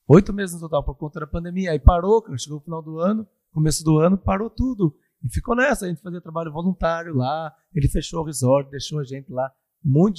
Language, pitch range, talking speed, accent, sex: Portuguese, 140-195 Hz, 230 wpm, Brazilian, male